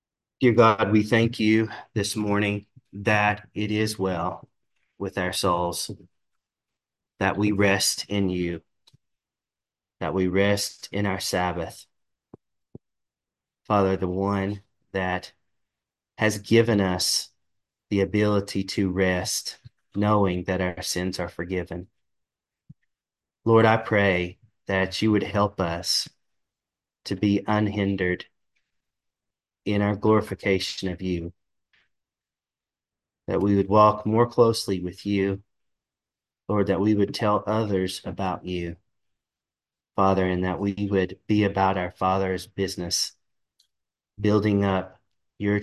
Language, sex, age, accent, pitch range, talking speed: English, male, 30-49, American, 95-105 Hz, 115 wpm